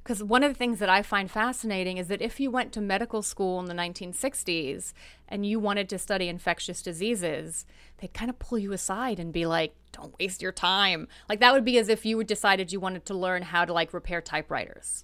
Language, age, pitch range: English, 30-49, 185-230 Hz